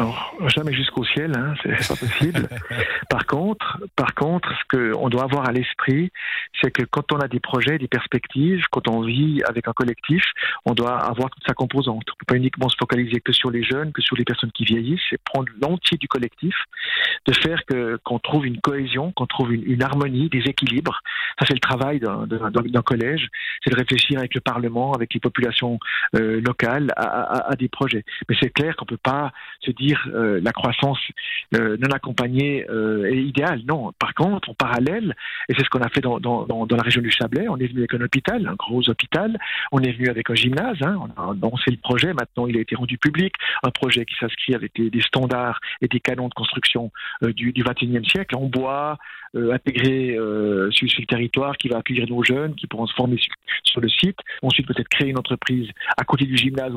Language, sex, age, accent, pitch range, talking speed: French, male, 40-59, French, 120-140 Hz, 225 wpm